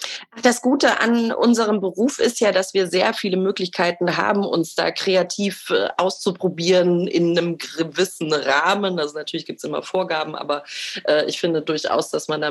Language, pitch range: German, 165-195 Hz